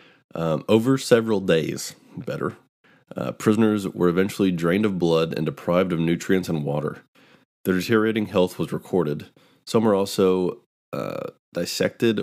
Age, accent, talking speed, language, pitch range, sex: 30-49, American, 135 wpm, English, 85-95 Hz, male